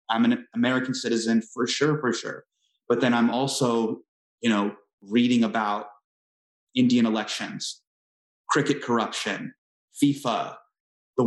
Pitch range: 110-135 Hz